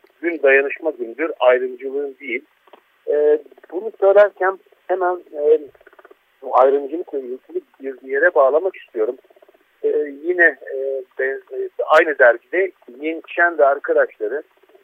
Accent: native